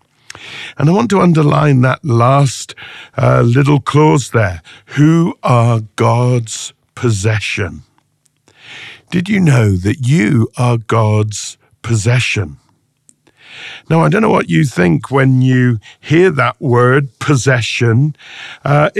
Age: 50-69